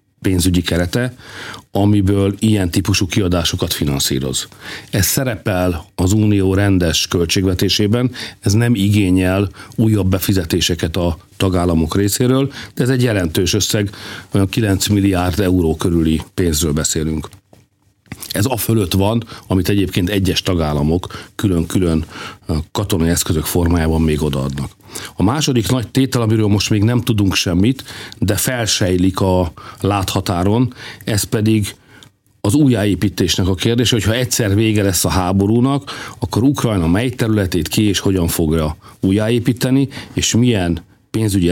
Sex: male